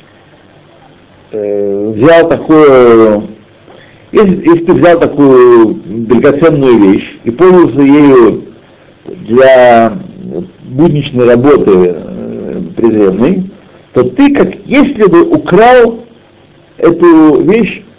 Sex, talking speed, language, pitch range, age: male, 85 wpm, Russian, 125-190 Hz, 60-79